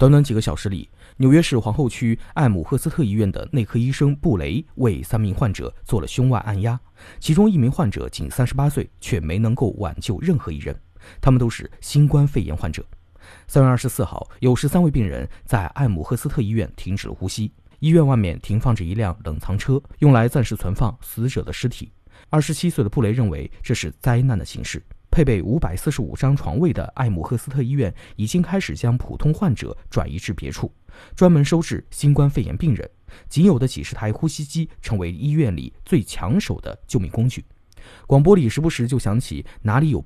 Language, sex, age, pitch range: Chinese, male, 20-39, 95-145 Hz